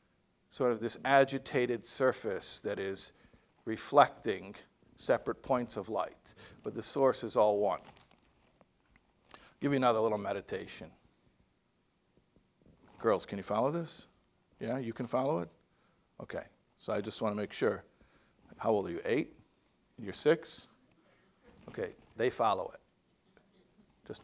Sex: male